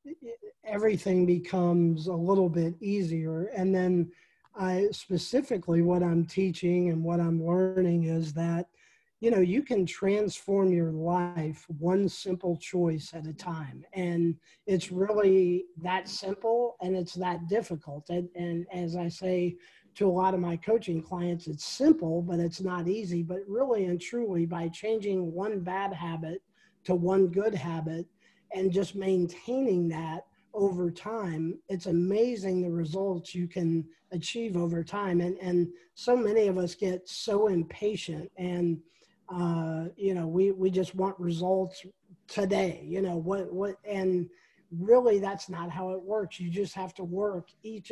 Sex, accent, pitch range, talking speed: male, American, 170-195 Hz, 155 wpm